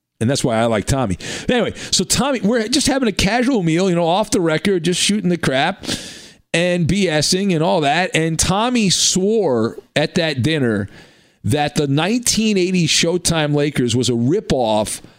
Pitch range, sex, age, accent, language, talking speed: 120-170 Hz, male, 40-59, American, English, 170 wpm